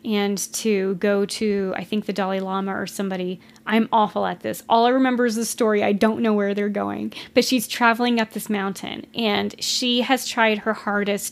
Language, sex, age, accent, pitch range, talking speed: English, female, 30-49, American, 200-230 Hz, 205 wpm